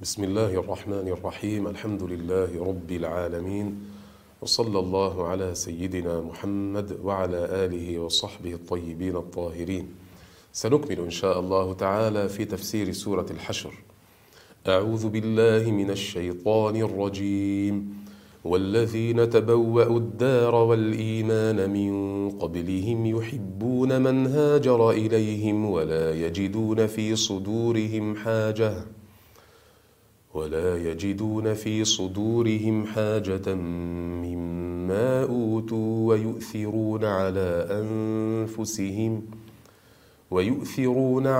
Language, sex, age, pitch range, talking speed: Arabic, male, 40-59, 90-110 Hz, 85 wpm